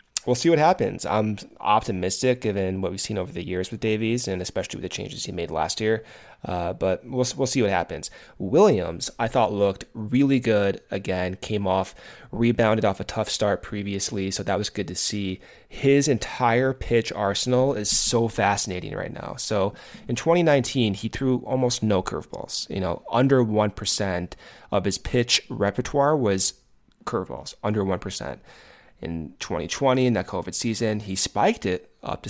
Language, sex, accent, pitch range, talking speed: English, male, American, 100-125 Hz, 170 wpm